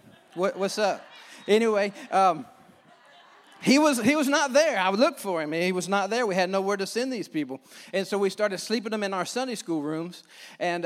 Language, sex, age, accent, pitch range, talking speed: English, male, 40-59, American, 170-200 Hz, 215 wpm